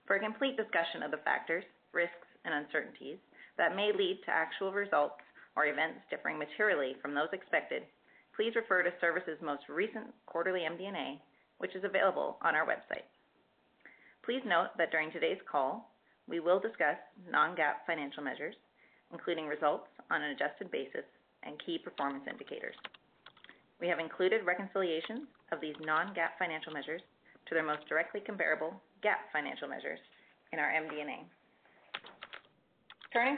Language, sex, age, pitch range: English, female, 30-49, 160-210 Hz